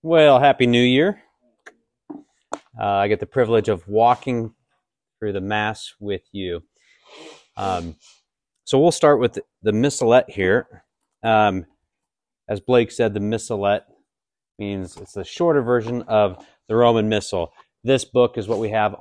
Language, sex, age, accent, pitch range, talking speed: English, male, 30-49, American, 100-130 Hz, 145 wpm